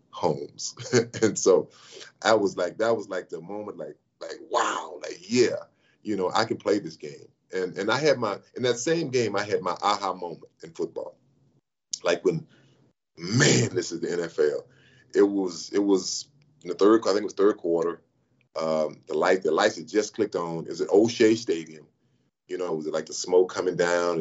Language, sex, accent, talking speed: English, male, American, 205 wpm